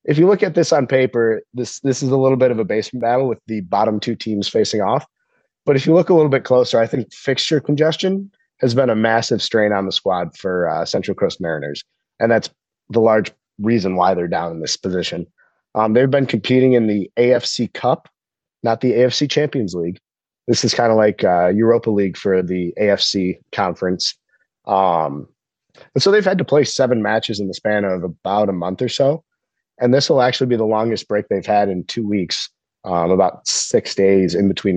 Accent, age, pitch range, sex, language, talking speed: American, 30-49, 100-130 Hz, male, English, 210 wpm